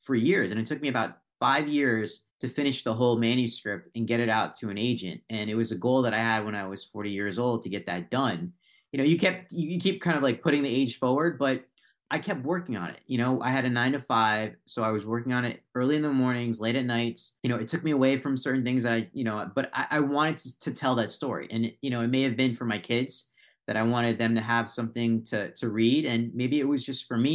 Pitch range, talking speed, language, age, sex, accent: 115-135 Hz, 280 wpm, English, 30-49, male, American